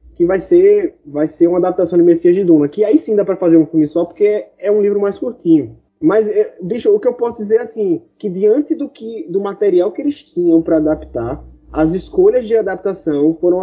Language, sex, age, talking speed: Portuguese, male, 20-39, 235 wpm